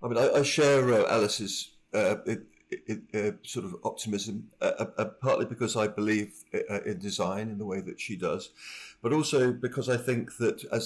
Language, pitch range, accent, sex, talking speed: English, 100-125 Hz, British, male, 195 wpm